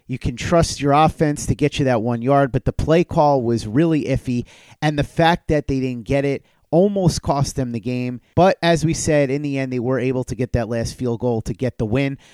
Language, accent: English, American